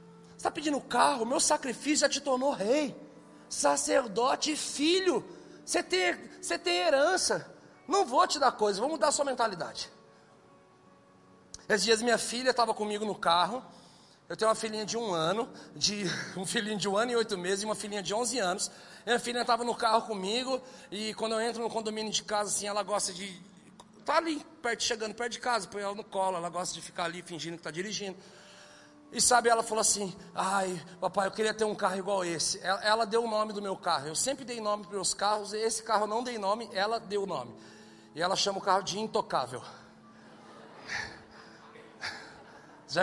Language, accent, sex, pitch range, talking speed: Portuguese, Brazilian, male, 185-235 Hz, 200 wpm